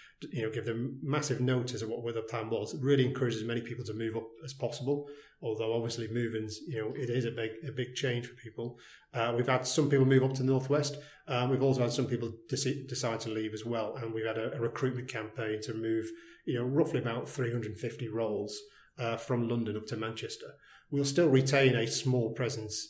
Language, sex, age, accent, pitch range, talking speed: English, male, 30-49, British, 115-135 Hz, 215 wpm